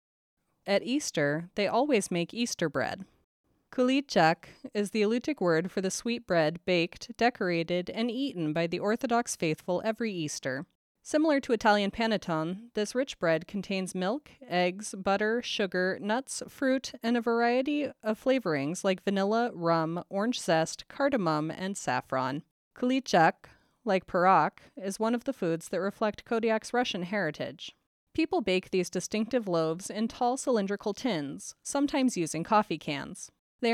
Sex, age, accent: female, 30-49, American